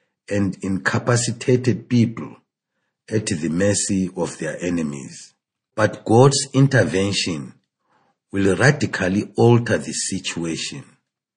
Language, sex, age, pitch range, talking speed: English, male, 50-69, 90-115 Hz, 90 wpm